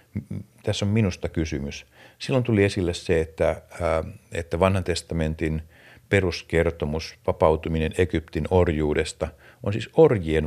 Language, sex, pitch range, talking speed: Finnish, male, 80-105 Hz, 110 wpm